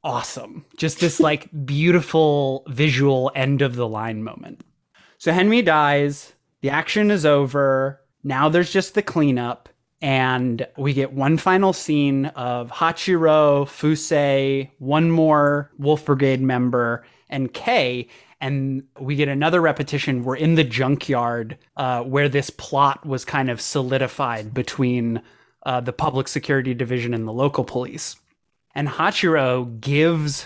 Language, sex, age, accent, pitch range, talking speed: English, male, 20-39, American, 130-160 Hz, 135 wpm